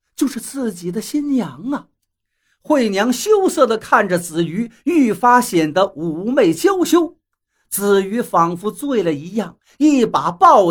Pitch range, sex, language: 190-285 Hz, male, Chinese